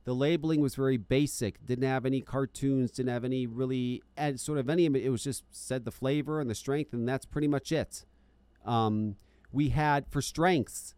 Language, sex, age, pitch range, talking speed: English, male, 40-59, 100-140 Hz, 200 wpm